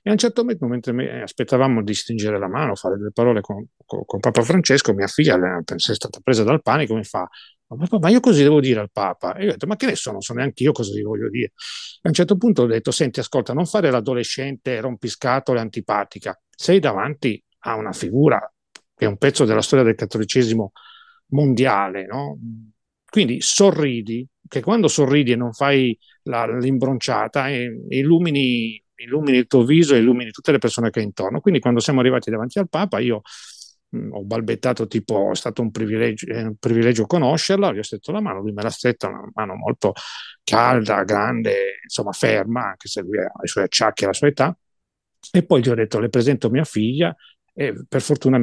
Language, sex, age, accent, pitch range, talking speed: Italian, male, 40-59, native, 115-150 Hz, 200 wpm